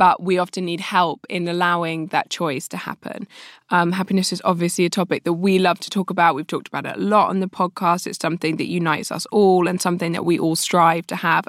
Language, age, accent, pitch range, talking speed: English, 20-39, British, 165-195 Hz, 240 wpm